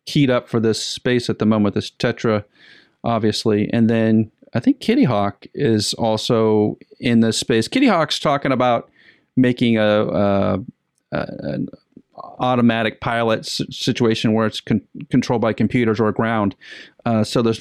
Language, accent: English, American